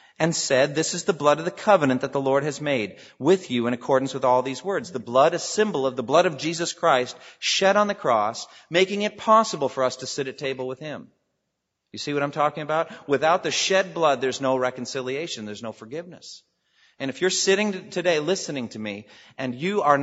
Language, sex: English, male